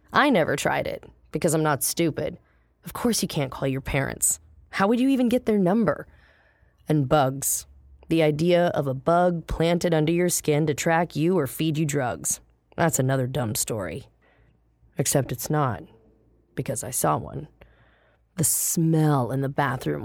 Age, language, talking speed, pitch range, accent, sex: 20-39, English, 170 wpm, 135-160 Hz, American, female